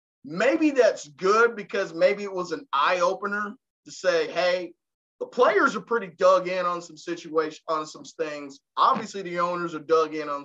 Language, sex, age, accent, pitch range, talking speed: English, male, 30-49, American, 180-280 Hz, 185 wpm